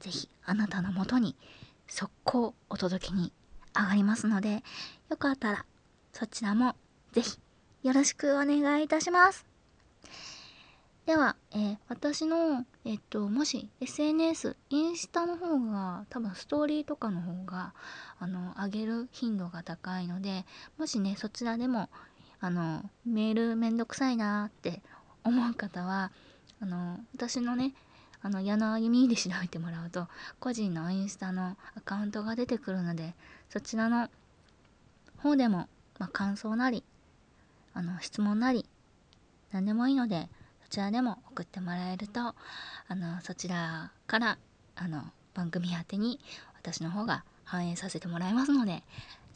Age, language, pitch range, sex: 20-39, Japanese, 185-250 Hz, female